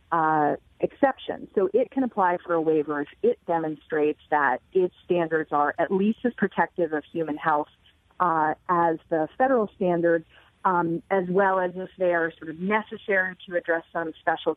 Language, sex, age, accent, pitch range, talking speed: English, female, 40-59, American, 160-185 Hz, 175 wpm